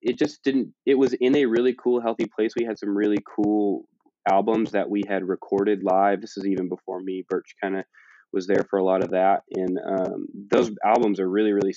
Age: 20-39